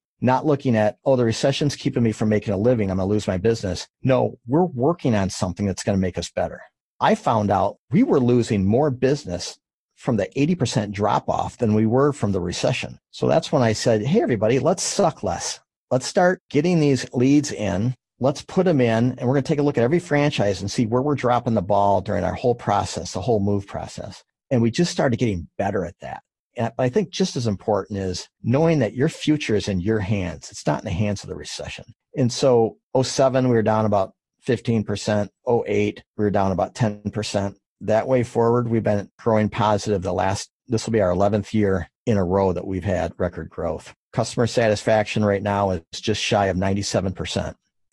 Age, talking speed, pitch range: 50-69, 210 wpm, 100-130 Hz